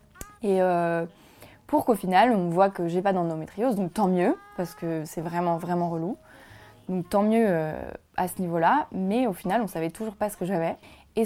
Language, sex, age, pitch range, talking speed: French, female, 20-39, 170-225 Hz, 195 wpm